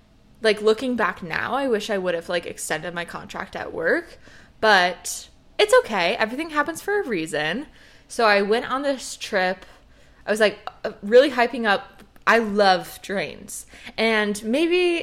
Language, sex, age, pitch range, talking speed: English, female, 20-39, 190-280 Hz, 160 wpm